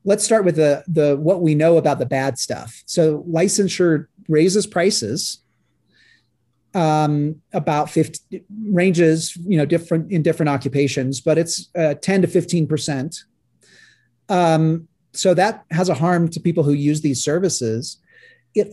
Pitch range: 150-185 Hz